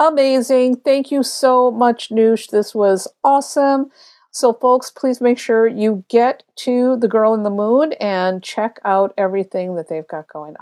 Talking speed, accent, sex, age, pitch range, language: 170 wpm, American, female, 50-69, 195-260 Hz, English